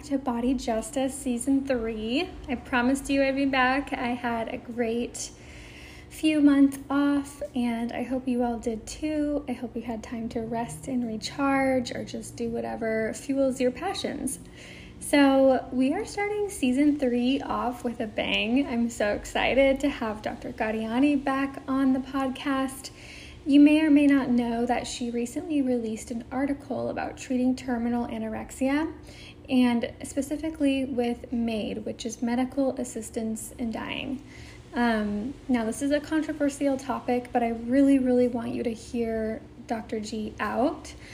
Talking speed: 155 wpm